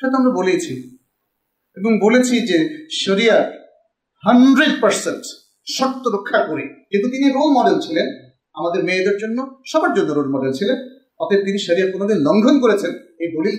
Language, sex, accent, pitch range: Bengali, male, native, 170-255 Hz